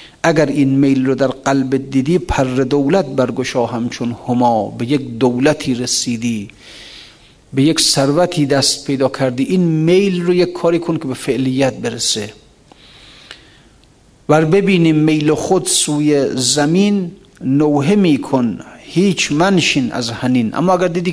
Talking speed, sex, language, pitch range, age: 135 wpm, male, Persian, 130-155 Hz, 50-69